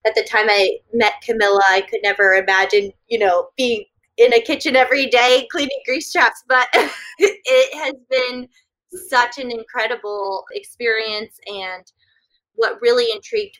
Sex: female